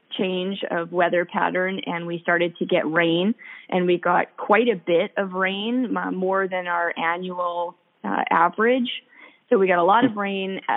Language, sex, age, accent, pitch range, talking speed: English, female, 20-39, American, 170-205 Hz, 175 wpm